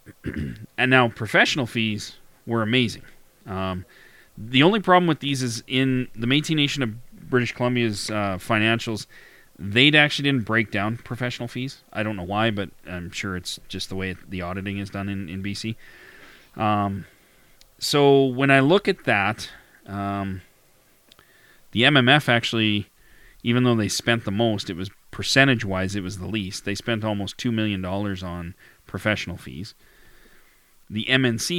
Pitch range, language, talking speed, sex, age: 100-125 Hz, English, 155 wpm, male, 30-49